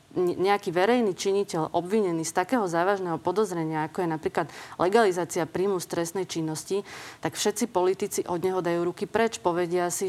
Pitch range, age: 170-195 Hz, 30-49